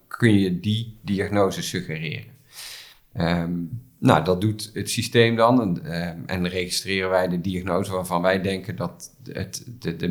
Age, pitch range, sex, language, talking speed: 50-69, 90-110 Hz, male, Dutch, 140 wpm